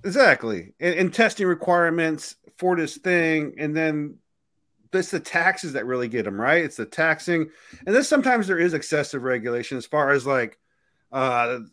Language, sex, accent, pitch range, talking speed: English, male, American, 140-180 Hz, 170 wpm